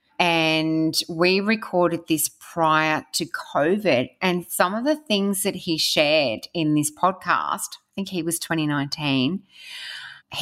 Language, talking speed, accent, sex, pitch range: English, 130 wpm, Australian, female, 155-185 Hz